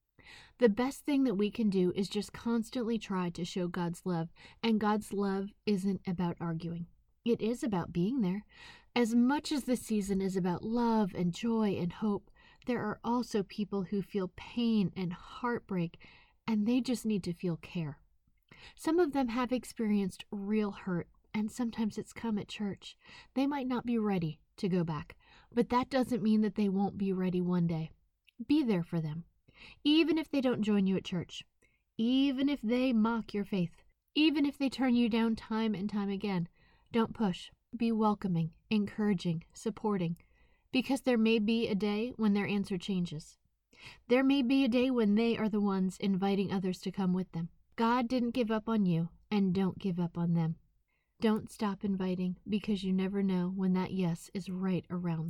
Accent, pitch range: American, 185-235 Hz